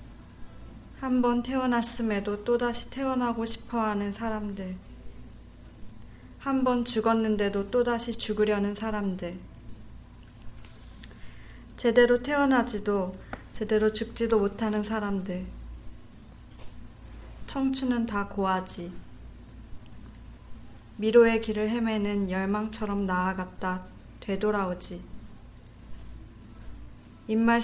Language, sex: Korean, female